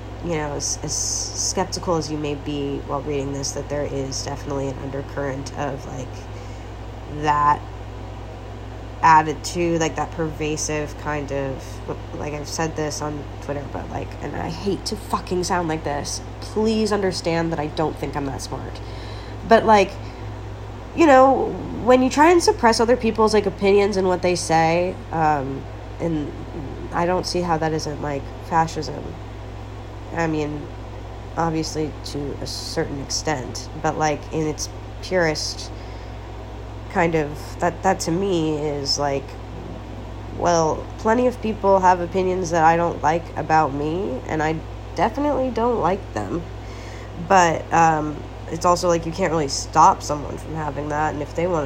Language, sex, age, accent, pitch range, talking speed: English, female, 20-39, American, 110-165 Hz, 155 wpm